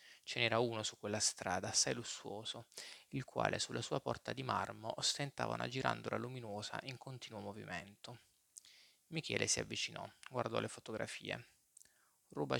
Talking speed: 140 wpm